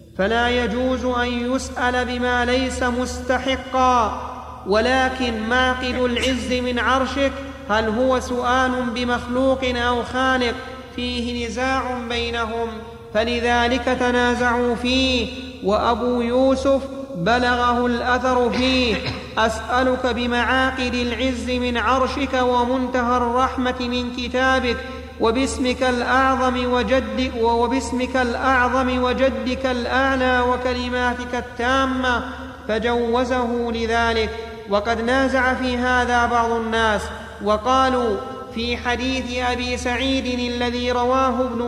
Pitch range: 245-255 Hz